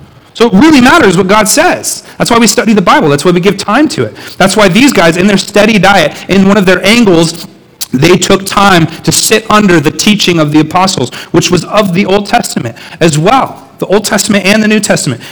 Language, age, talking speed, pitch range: English, 40-59, 230 wpm, 145-195 Hz